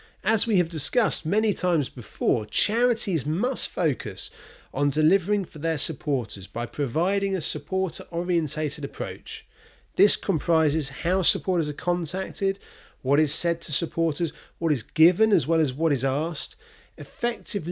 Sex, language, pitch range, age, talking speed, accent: male, English, 140-180 Hz, 30-49, 140 wpm, British